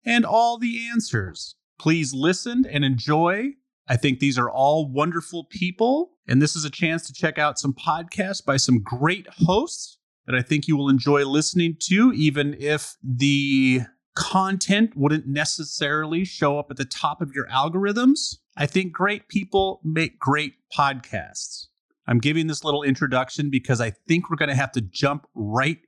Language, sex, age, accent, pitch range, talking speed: English, male, 30-49, American, 135-175 Hz, 170 wpm